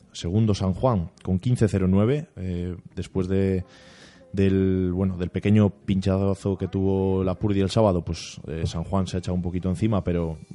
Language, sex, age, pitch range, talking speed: Spanish, male, 20-39, 90-105 Hz, 175 wpm